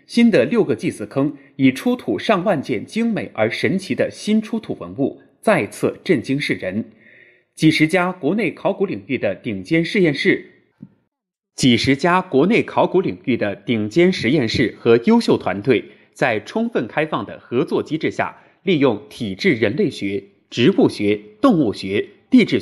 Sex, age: male, 20-39